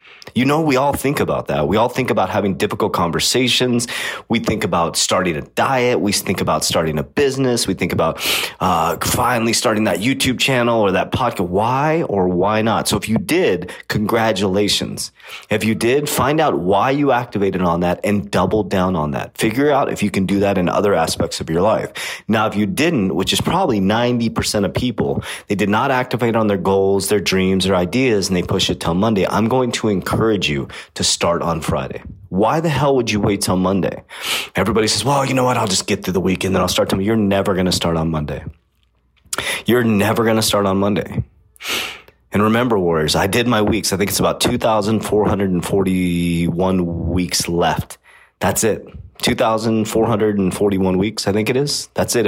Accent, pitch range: American, 95-120 Hz